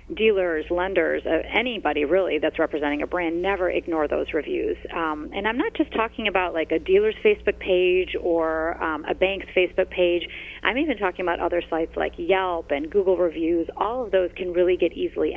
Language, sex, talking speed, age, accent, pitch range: English, female, 185 wpm, 30-49, American, 165-205 Hz